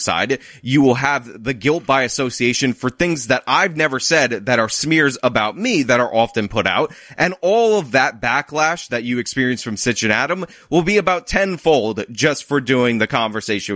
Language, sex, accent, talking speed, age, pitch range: English, male, American, 190 wpm, 20-39, 120-155 Hz